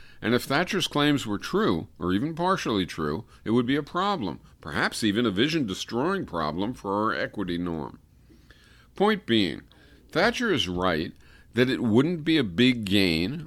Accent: American